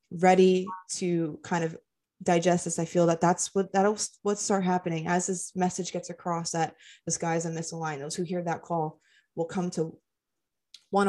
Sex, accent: female, American